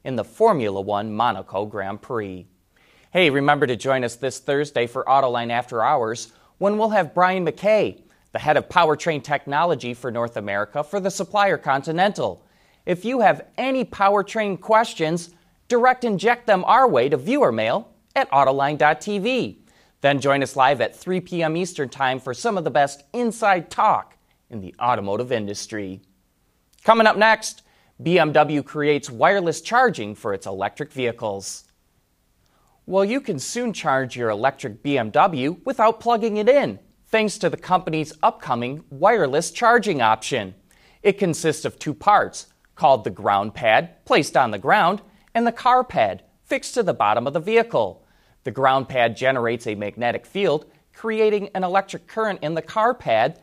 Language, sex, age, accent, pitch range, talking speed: English, male, 30-49, American, 130-205 Hz, 160 wpm